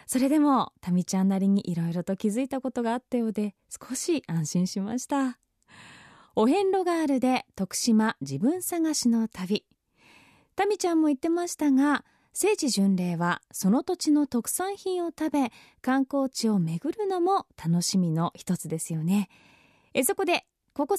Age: 20-39